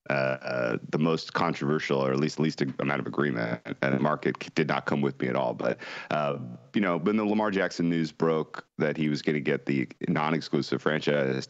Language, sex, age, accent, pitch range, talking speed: English, male, 30-49, American, 70-80 Hz, 215 wpm